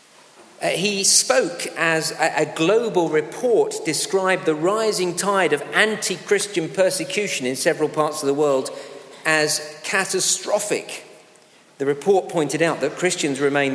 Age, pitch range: 50-69, 140-200 Hz